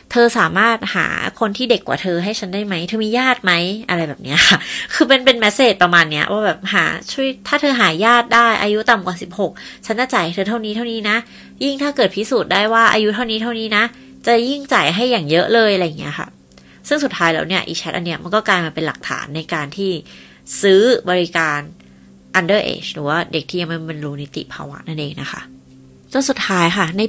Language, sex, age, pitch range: Thai, female, 20-39, 170-235 Hz